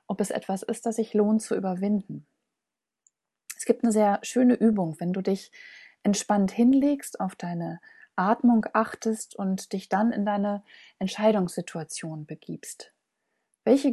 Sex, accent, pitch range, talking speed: female, German, 180-230 Hz, 140 wpm